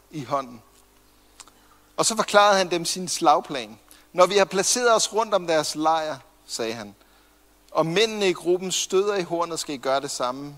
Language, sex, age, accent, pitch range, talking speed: Danish, male, 60-79, native, 165-225 Hz, 180 wpm